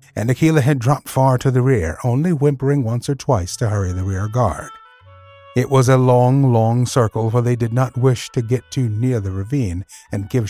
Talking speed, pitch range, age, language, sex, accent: 210 wpm, 105-140 Hz, 50-69, English, male, American